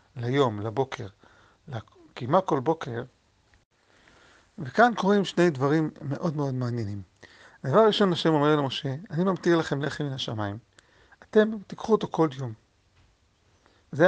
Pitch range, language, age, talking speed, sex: 125-165 Hz, Hebrew, 50-69, 125 wpm, male